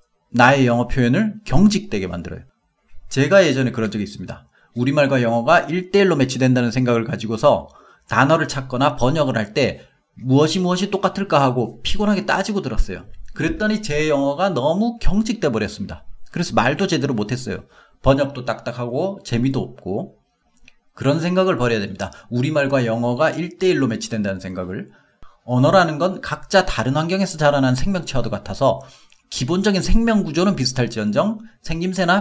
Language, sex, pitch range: Korean, male, 120-190 Hz